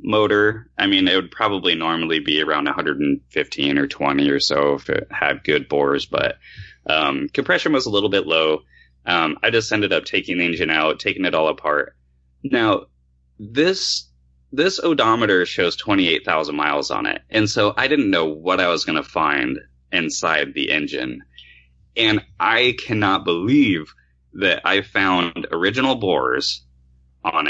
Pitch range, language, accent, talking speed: 65-105 Hz, English, American, 160 wpm